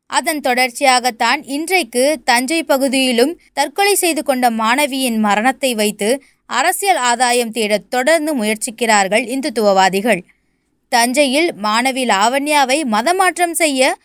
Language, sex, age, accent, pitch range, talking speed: Tamil, female, 20-39, native, 245-330 Hz, 100 wpm